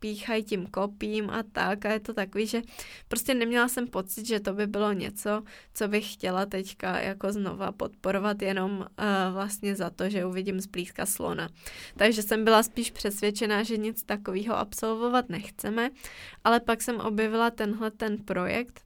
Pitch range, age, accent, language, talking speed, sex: 200-230 Hz, 20-39, native, Czech, 165 wpm, female